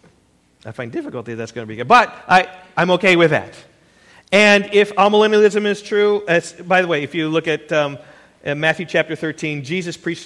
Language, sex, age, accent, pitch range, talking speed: English, male, 40-59, American, 125-180 Hz, 195 wpm